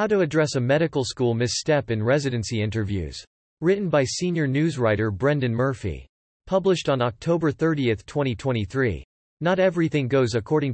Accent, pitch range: American, 110-150 Hz